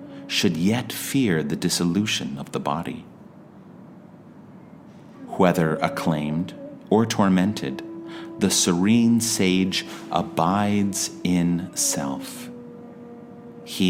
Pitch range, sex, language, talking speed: 85-130 Hz, male, English, 80 wpm